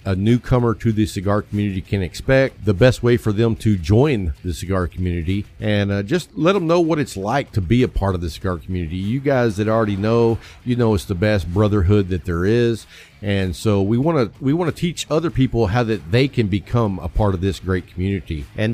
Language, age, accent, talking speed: English, 50-69, American, 230 wpm